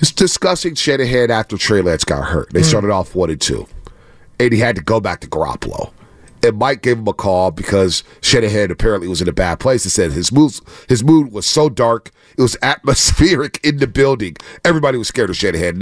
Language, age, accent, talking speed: English, 40-59, American, 210 wpm